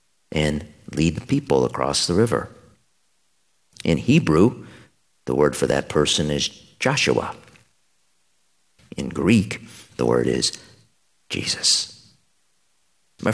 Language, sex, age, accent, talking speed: English, male, 50-69, American, 105 wpm